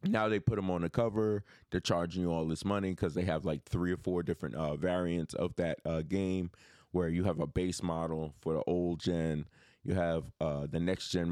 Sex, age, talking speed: male, 20-39, 230 wpm